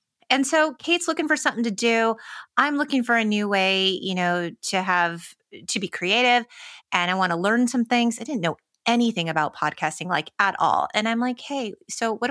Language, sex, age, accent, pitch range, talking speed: English, female, 30-49, American, 175-235 Hz, 210 wpm